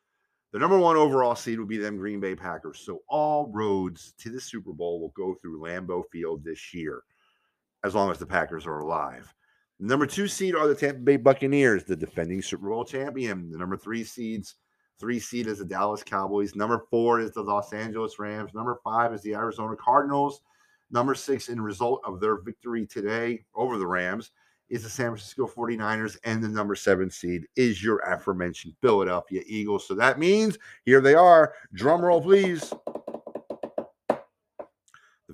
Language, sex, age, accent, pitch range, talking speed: English, male, 40-59, American, 95-125 Hz, 180 wpm